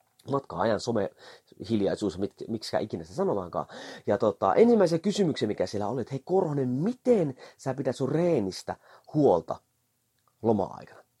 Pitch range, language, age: 120-180 Hz, Finnish, 30-49